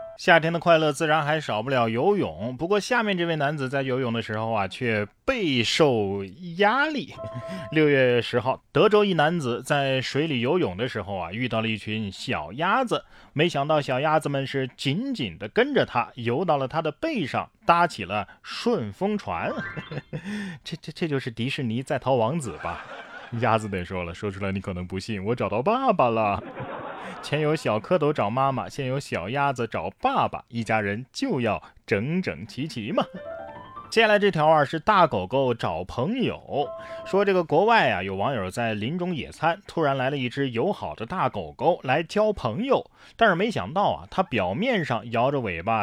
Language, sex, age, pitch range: Chinese, male, 20-39, 110-160 Hz